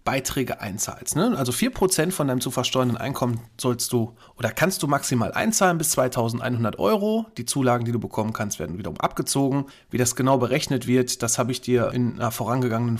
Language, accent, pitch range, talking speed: German, German, 115-140 Hz, 190 wpm